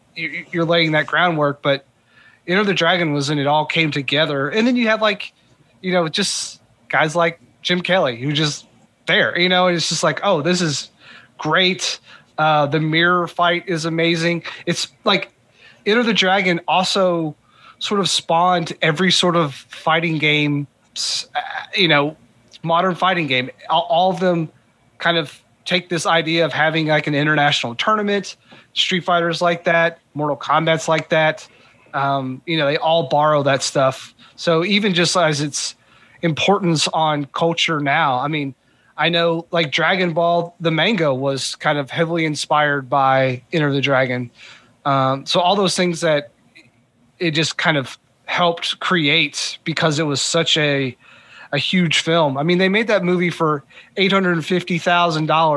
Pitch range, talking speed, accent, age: 145-175 Hz, 160 wpm, American, 30-49